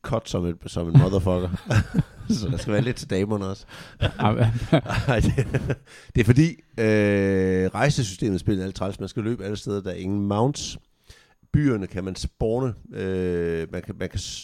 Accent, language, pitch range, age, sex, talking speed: native, Danish, 85-110 Hz, 60-79, male, 175 wpm